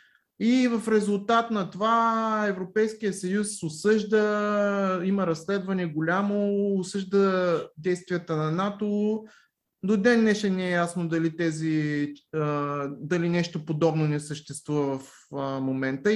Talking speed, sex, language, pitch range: 110 wpm, male, Bulgarian, 150-205 Hz